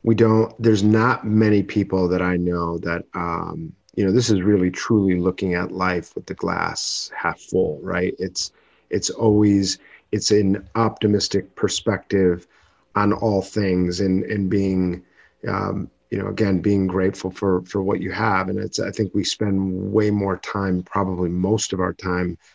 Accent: American